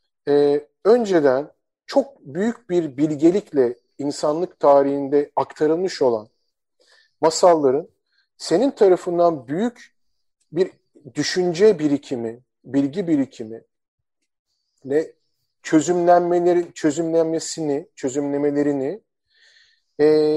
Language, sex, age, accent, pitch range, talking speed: Turkish, male, 50-69, native, 155-205 Hz, 70 wpm